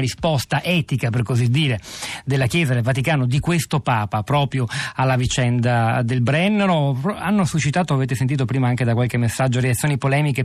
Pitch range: 125-145 Hz